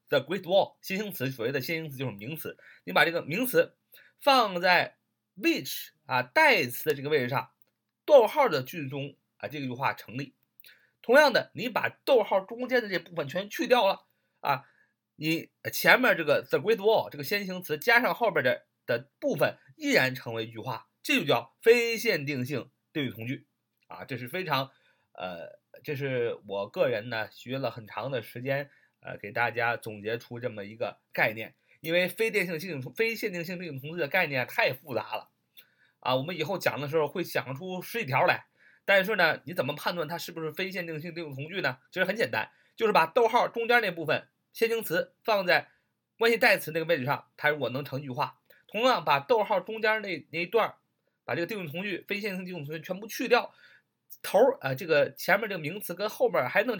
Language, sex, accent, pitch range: Chinese, male, native, 135-215 Hz